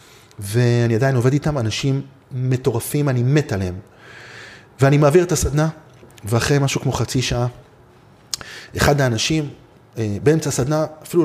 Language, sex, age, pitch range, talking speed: Hebrew, male, 30-49, 115-150 Hz, 125 wpm